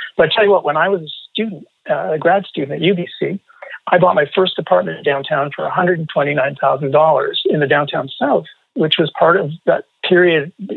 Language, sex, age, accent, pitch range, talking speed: English, male, 40-59, American, 140-190 Hz, 190 wpm